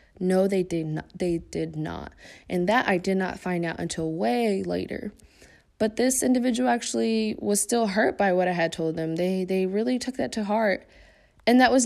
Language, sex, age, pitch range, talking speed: English, female, 20-39, 180-220 Hz, 200 wpm